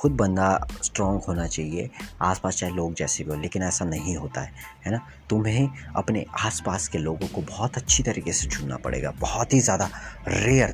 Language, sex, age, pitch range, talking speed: Hindi, male, 20-39, 85-110 Hz, 190 wpm